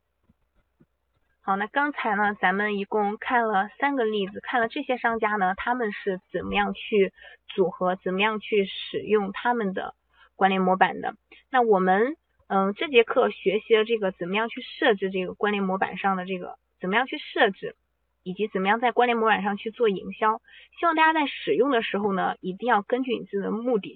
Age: 20-39